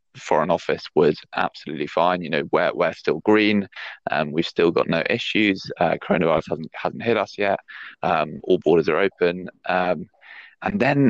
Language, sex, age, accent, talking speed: English, male, 20-39, British, 180 wpm